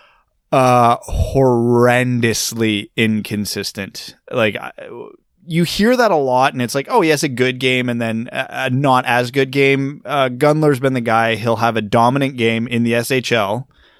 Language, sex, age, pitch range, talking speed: English, male, 20-39, 110-130 Hz, 165 wpm